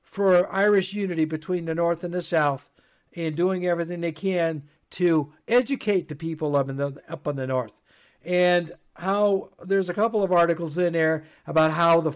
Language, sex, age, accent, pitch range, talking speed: English, male, 60-79, American, 160-195 Hz, 185 wpm